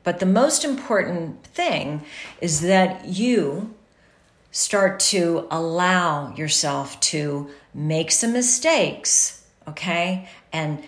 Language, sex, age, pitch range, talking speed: English, female, 40-59, 155-205 Hz, 100 wpm